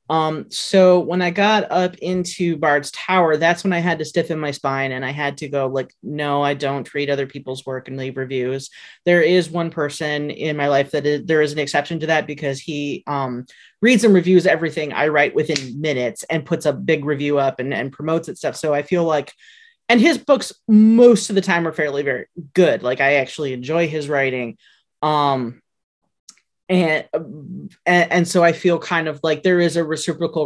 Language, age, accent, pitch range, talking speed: English, 30-49, American, 145-175 Hz, 205 wpm